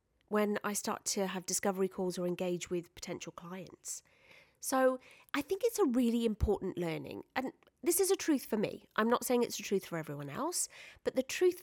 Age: 30-49